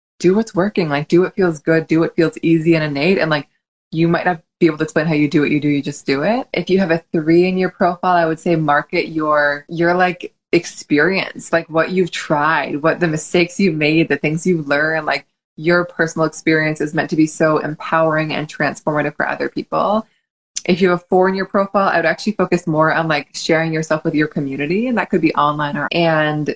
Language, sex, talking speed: English, female, 235 wpm